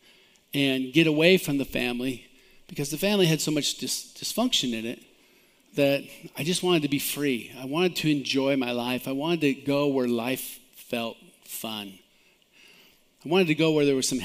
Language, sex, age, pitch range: English, male, 50-69, 130-160 Hz